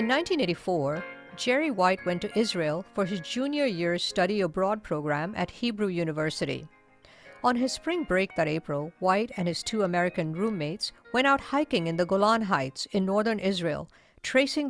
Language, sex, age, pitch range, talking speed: English, female, 50-69, 170-220 Hz, 165 wpm